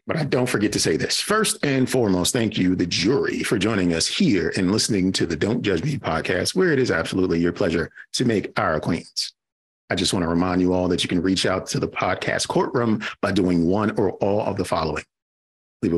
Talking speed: 230 wpm